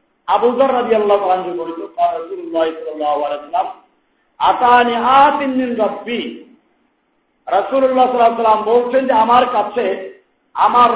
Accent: native